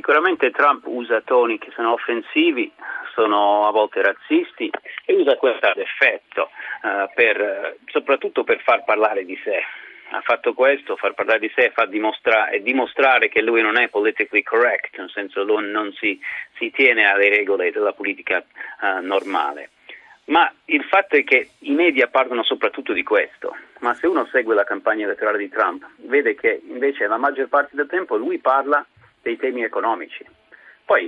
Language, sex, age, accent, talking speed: Italian, male, 40-59, native, 170 wpm